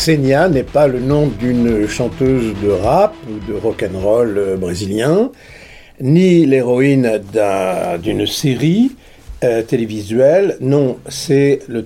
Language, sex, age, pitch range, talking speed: French, male, 50-69, 125-155 Hz, 115 wpm